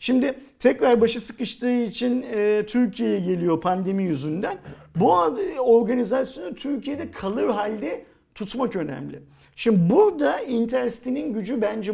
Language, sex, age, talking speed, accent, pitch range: Turkish, male, 50-69, 105 wpm, native, 185-245 Hz